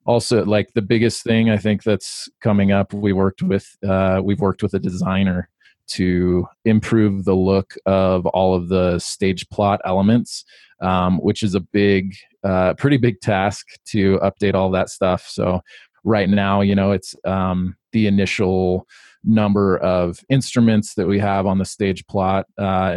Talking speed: 165 wpm